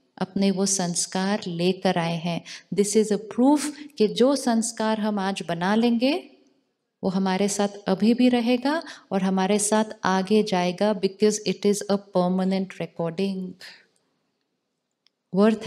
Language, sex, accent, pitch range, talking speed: Hindi, female, native, 190-220 Hz, 135 wpm